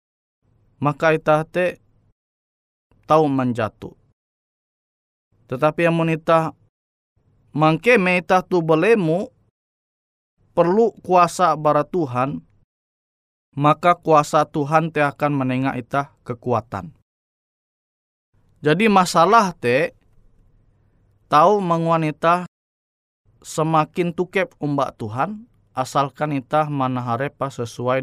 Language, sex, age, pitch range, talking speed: Indonesian, male, 20-39, 120-165 Hz, 80 wpm